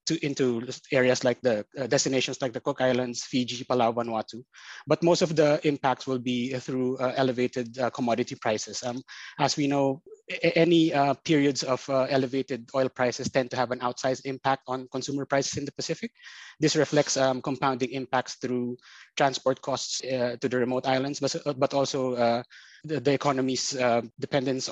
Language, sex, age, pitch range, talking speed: English, male, 20-39, 125-140 Hz, 175 wpm